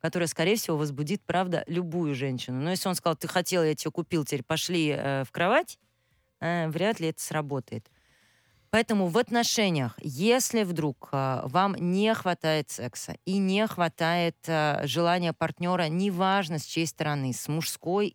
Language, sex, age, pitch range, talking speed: Russian, female, 30-49, 145-185 Hz, 160 wpm